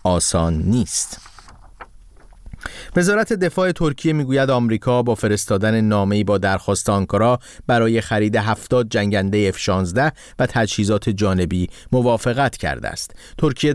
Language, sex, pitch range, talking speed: Persian, male, 100-135 Hz, 110 wpm